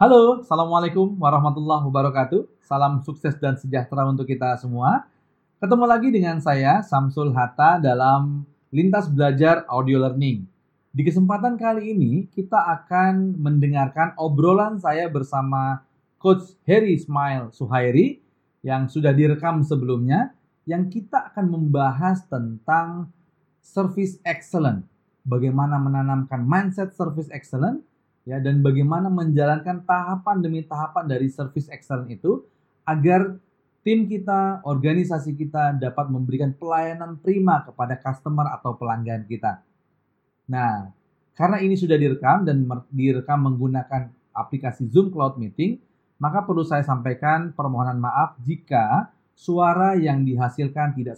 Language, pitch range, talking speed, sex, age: Indonesian, 130-175 Hz, 115 wpm, male, 30-49